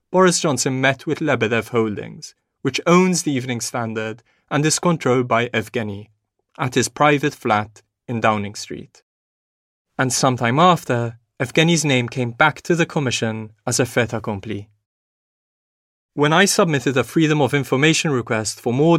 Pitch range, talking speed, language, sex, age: 110-150 Hz, 150 wpm, English, male, 30-49